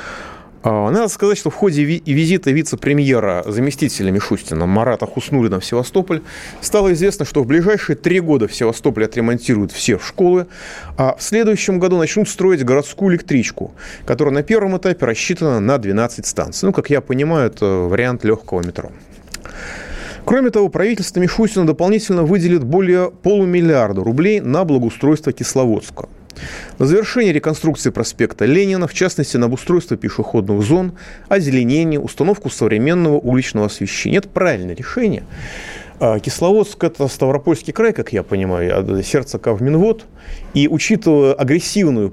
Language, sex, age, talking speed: Russian, male, 30-49, 130 wpm